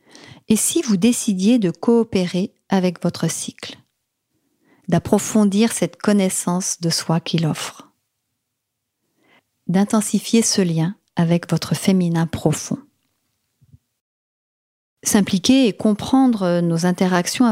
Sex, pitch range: female, 170-220 Hz